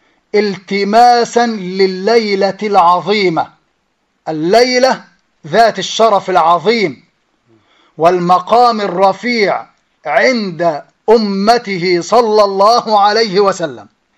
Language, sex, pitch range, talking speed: Arabic, male, 180-230 Hz, 65 wpm